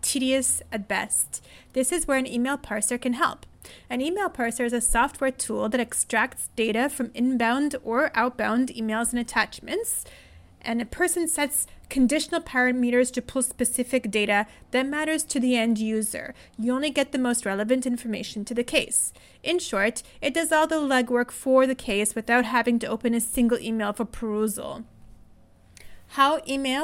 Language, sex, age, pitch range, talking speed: English, female, 30-49, 225-275 Hz, 165 wpm